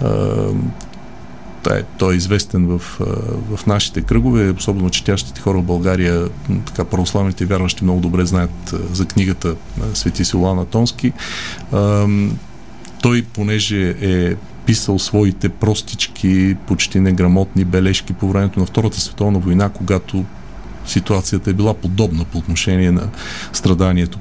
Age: 40-59